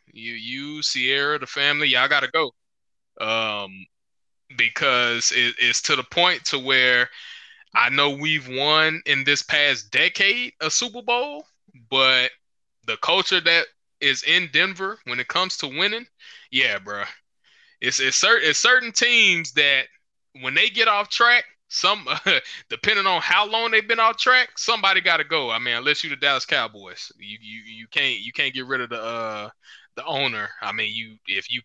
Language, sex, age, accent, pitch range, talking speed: English, male, 20-39, American, 120-190 Hz, 175 wpm